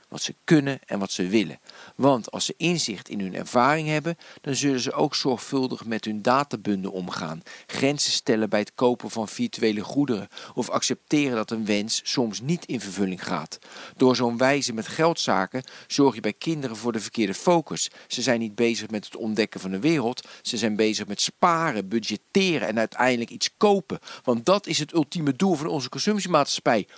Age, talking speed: 50-69, 185 wpm